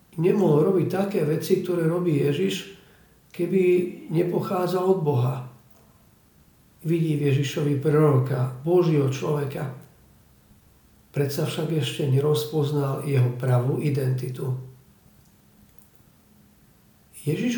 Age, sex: 50-69, male